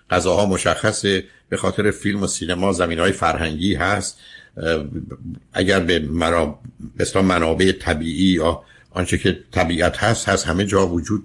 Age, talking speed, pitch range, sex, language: 60-79, 130 wpm, 85-105 Hz, male, Persian